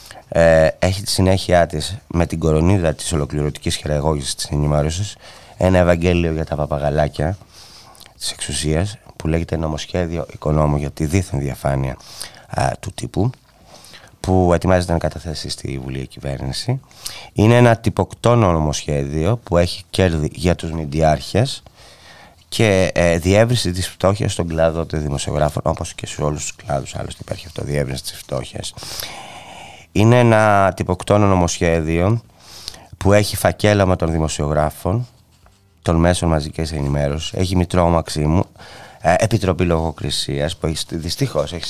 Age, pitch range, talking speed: 30-49, 75-100 Hz, 130 wpm